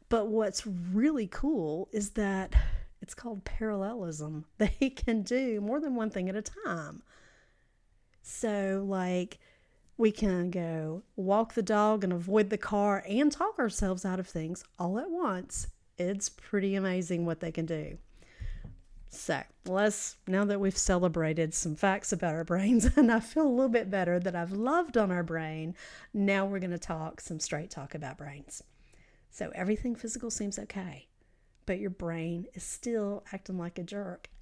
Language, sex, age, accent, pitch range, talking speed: English, female, 40-59, American, 175-225 Hz, 165 wpm